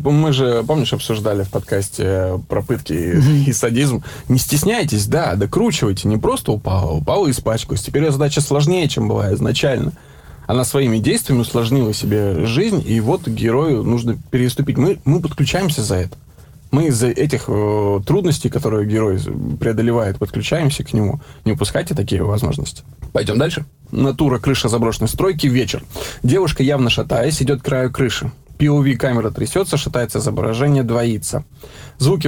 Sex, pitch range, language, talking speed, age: male, 110-140 Hz, Russian, 145 wpm, 20-39